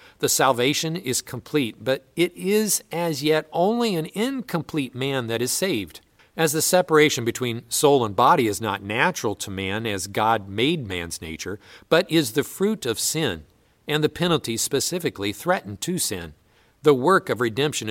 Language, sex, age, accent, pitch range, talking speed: English, male, 50-69, American, 120-165 Hz, 170 wpm